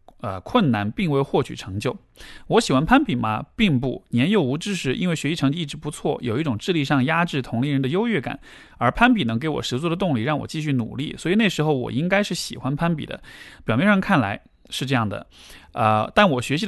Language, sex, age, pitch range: Chinese, male, 20-39, 125-185 Hz